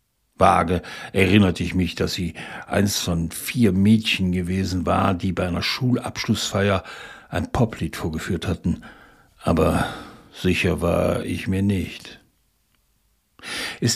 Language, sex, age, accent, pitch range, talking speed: German, male, 60-79, German, 95-120 Hz, 115 wpm